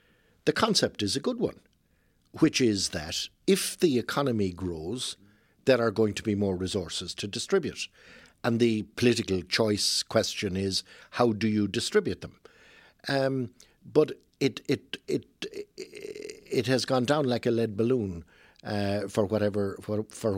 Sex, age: male, 60-79